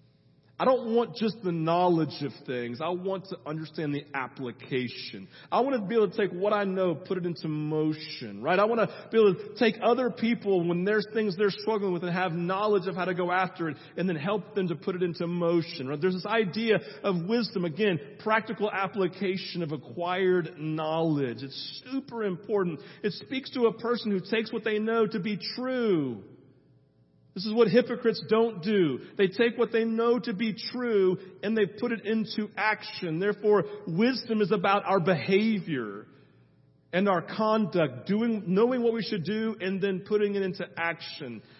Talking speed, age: 190 wpm, 40-59